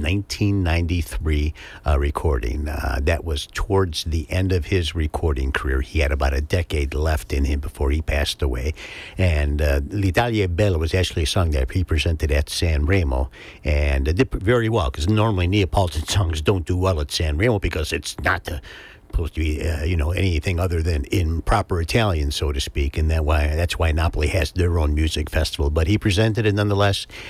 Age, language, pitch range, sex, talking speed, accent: 60-79, English, 75-95 Hz, male, 195 wpm, American